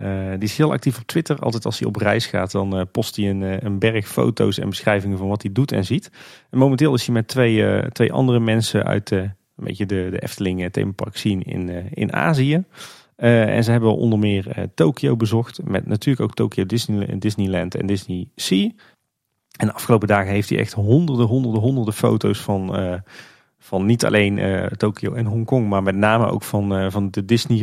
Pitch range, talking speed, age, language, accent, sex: 100-120 Hz, 205 wpm, 30-49, Dutch, Dutch, male